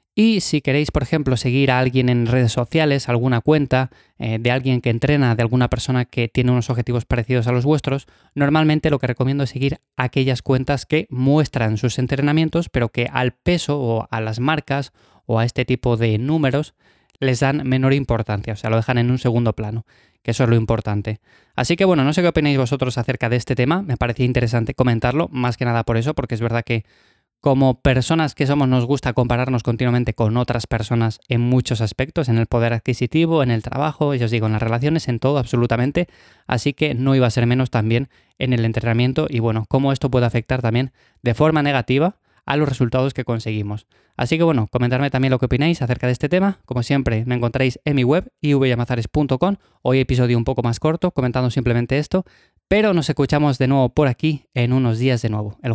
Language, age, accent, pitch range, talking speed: Spanish, 20-39, Spanish, 120-140 Hz, 210 wpm